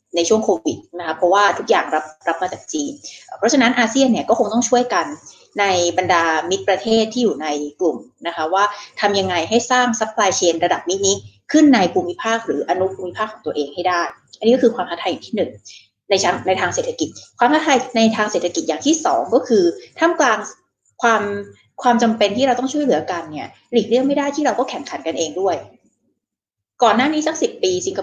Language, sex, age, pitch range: Thai, female, 20-39, 175-250 Hz